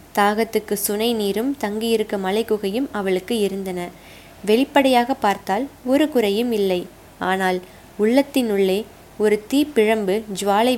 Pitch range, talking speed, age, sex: 195-240 Hz, 100 wpm, 20-39, female